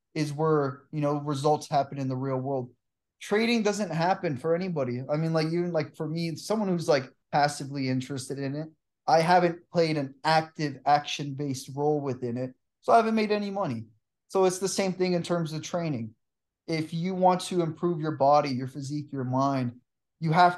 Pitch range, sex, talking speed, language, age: 140-170 Hz, male, 190 wpm, English, 20-39